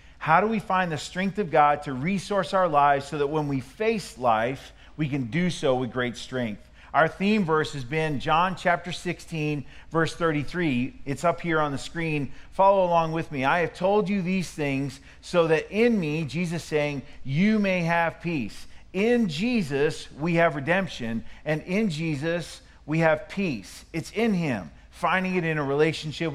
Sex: male